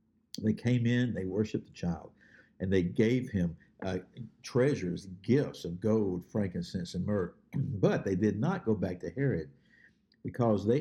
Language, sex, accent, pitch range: English, male, American, 95-125 Hz